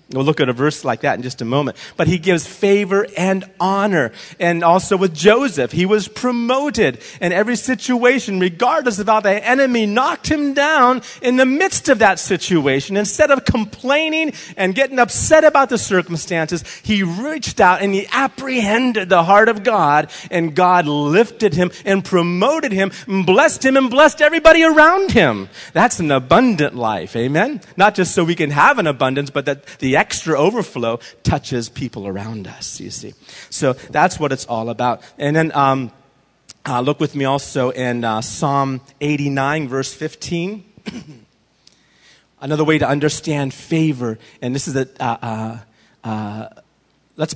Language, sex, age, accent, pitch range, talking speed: English, male, 40-59, American, 130-205 Hz, 165 wpm